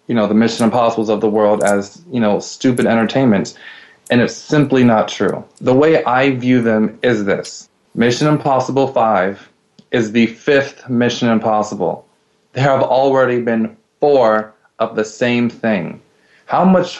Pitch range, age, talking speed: 110-130 Hz, 20-39, 155 wpm